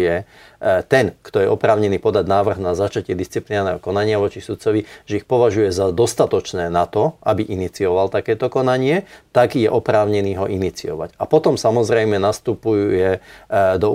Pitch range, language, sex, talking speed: 95-110 Hz, Slovak, male, 145 wpm